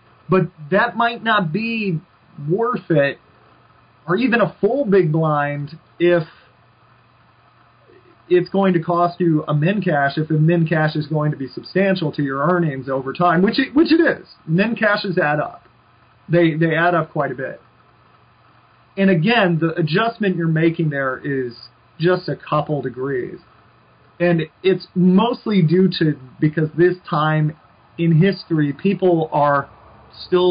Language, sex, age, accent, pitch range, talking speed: English, male, 30-49, American, 135-180 Hz, 150 wpm